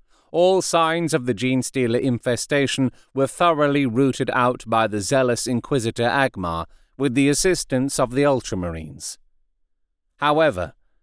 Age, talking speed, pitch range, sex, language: 40-59, 125 wpm, 100-150 Hz, male, English